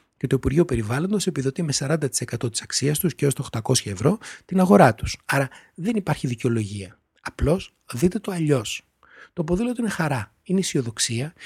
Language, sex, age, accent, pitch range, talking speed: Greek, male, 30-49, native, 125-170 Hz, 170 wpm